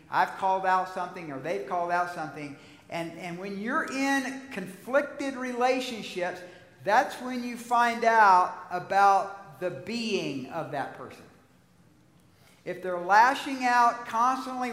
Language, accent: English, American